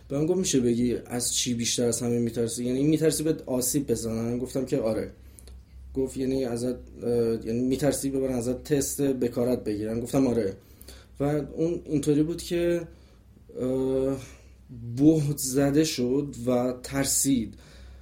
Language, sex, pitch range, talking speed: Persian, male, 120-150 Hz, 135 wpm